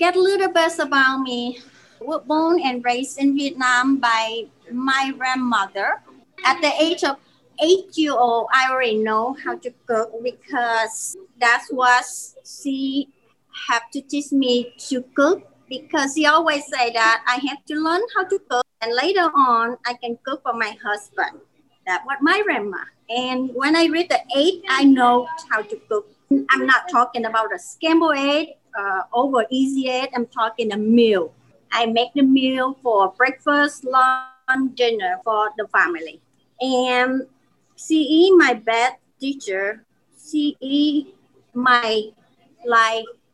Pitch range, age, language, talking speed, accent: 235-300 Hz, 30-49, English, 150 wpm, American